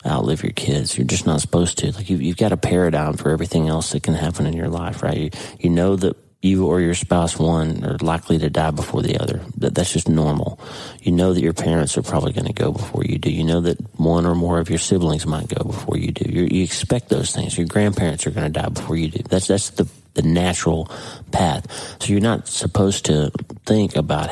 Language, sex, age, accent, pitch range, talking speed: English, male, 40-59, American, 80-95 Hz, 240 wpm